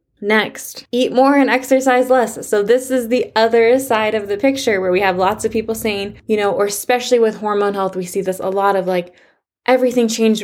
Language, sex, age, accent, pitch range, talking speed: English, female, 20-39, American, 195-250 Hz, 220 wpm